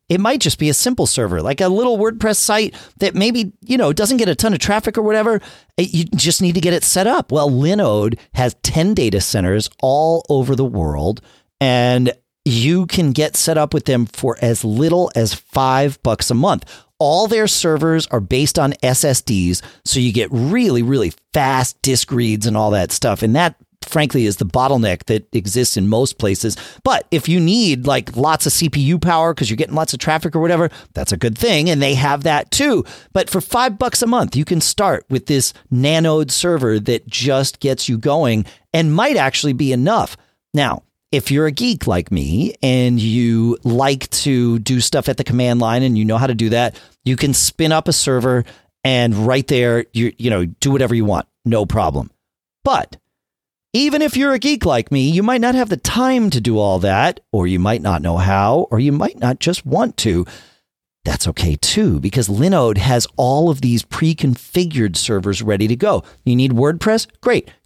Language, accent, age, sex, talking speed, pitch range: English, American, 40-59, male, 200 wpm, 115-165 Hz